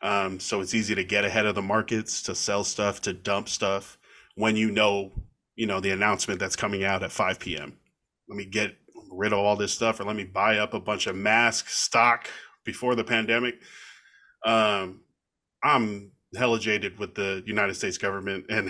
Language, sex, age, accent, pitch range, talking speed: English, male, 20-39, American, 105-125 Hz, 195 wpm